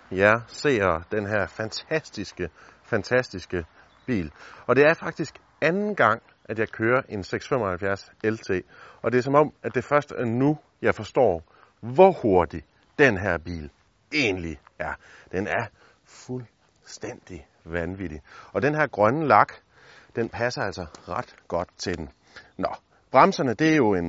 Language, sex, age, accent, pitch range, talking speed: English, male, 30-49, Danish, 95-150 Hz, 150 wpm